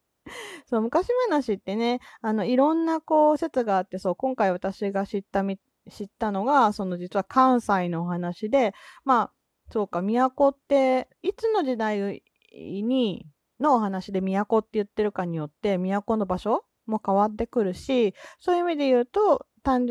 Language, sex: Japanese, female